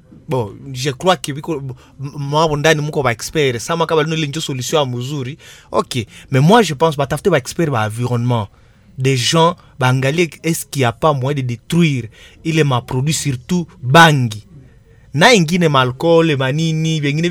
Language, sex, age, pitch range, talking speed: Swahili, male, 30-49, 125-165 Hz, 160 wpm